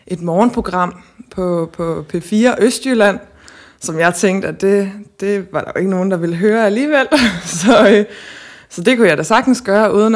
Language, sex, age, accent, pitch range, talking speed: Danish, female, 20-39, native, 170-205 Hz, 185 wpm